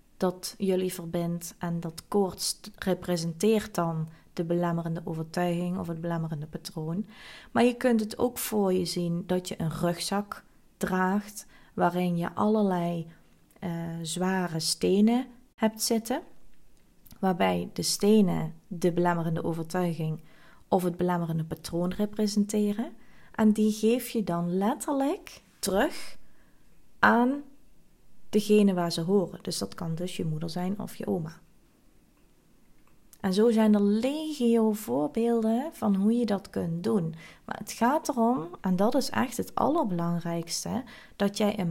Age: 20-39